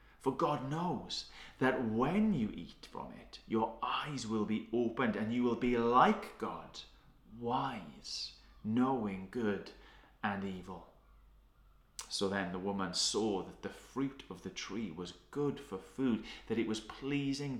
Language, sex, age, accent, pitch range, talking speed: English, male, 30-49, British, 100-125 Hz, 150 wpm